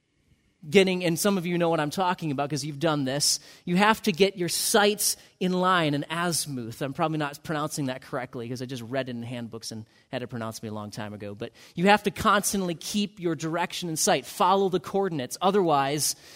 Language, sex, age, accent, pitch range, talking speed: English, male, 30-49, American, 135-195 Hz, 220 wpm